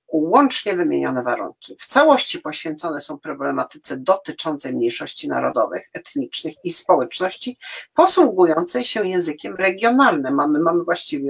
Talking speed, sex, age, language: 110 wpm, female, 50-69, Polish